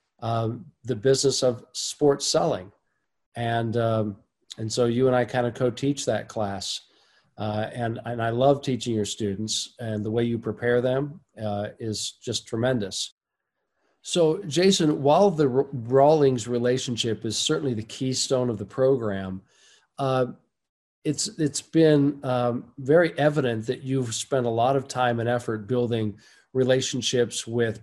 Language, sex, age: English, male, 50-69